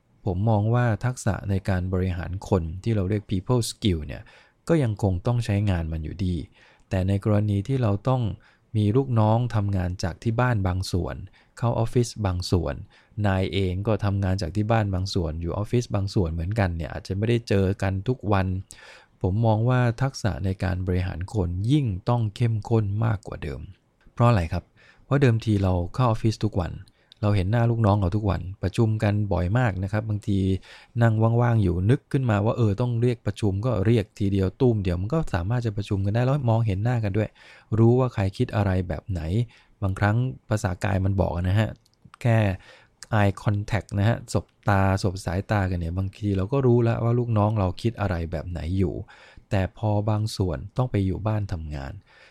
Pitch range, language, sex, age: 95-115 Hz, English, male, 20-39